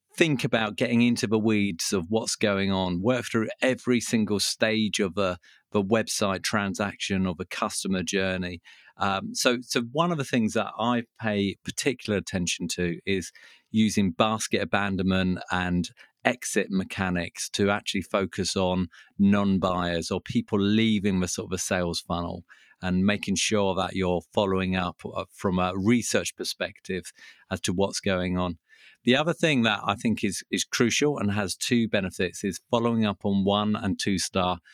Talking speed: 160 wpm